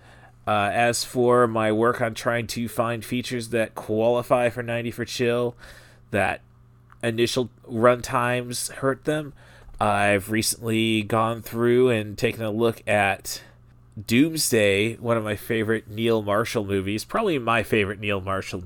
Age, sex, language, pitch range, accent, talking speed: 30-49, male, English, 105-125 Hz, American, 140 wpm